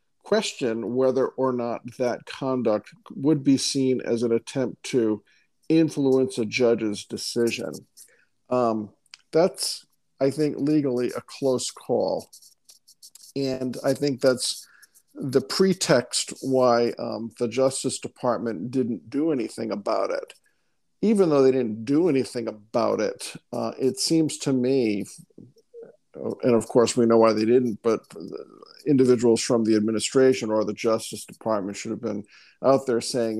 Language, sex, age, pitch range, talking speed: English, male, 50-69, 115-135 Hz, 140 wpm